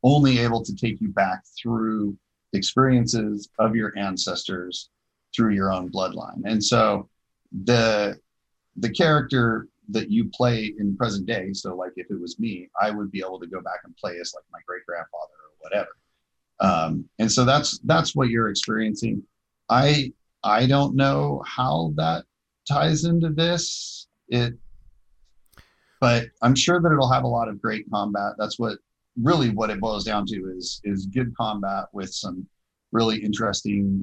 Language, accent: English, American